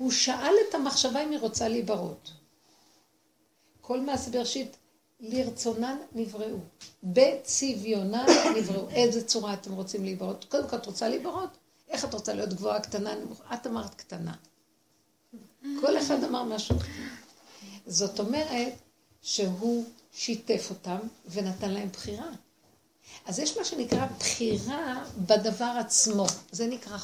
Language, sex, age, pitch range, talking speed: Hebrew, female, 60-79, 195-255 Hz, 120 wpm